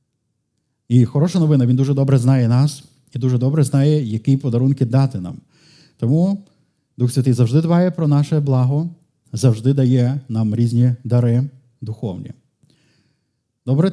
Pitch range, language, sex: 125-150 Hz, Ukrainian, male